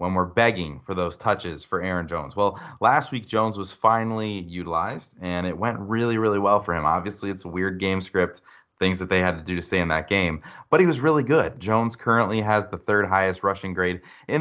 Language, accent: English, American